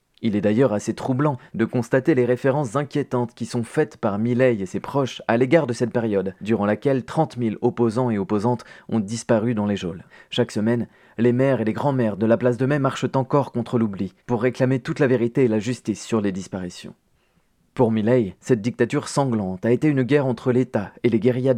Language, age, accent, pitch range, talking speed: French, 30-49, French, 115-130 Hz, 210 wpm